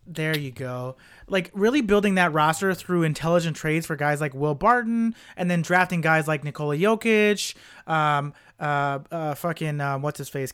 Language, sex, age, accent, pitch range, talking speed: English, male, 30-49, American, 155-200 Hz, 165 wpm